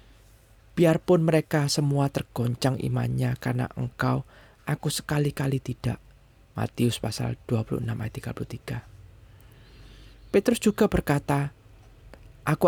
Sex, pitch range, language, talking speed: male, 120-165 Hz, Indonesian, 90 wpm